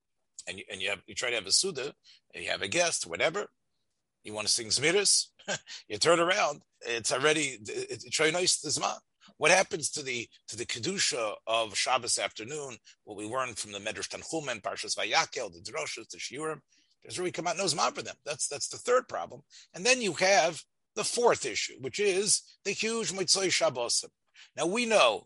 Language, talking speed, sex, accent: English, 190 wpm, male, American